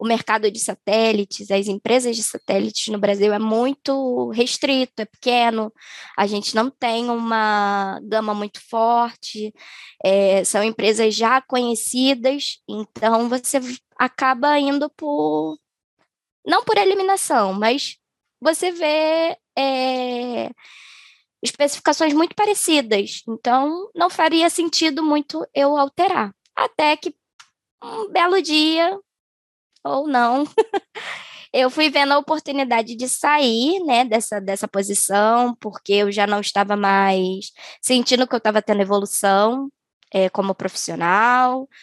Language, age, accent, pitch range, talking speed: Portuguese, 10-29, Brazilian, 210-290 Hz, 115 wpm